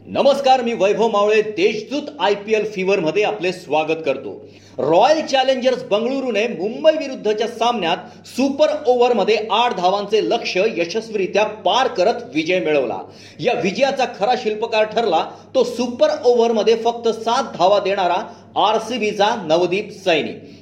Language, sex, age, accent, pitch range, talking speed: Marathi, male, 40-59, native, 200-250 Hz, 85 wpm